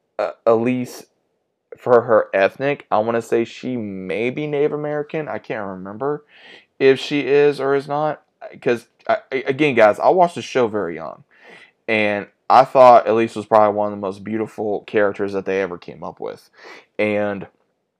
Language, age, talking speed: English, 20-39, 165 wpm